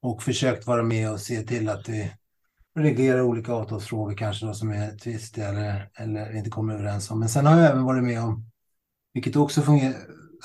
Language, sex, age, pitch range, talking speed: Swedish, male, 30-49, 115-135 Hz, 195 wpm